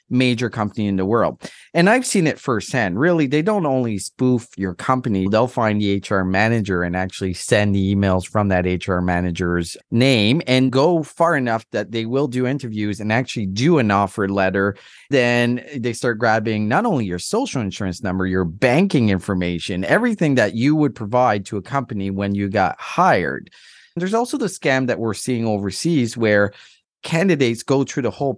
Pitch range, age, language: 100-130 Hz, 30-49, English